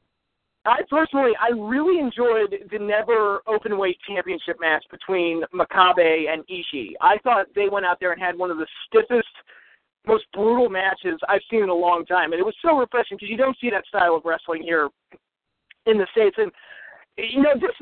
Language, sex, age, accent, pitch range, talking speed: English, male, 40-59, American, 170-230 Hz, 190 wpm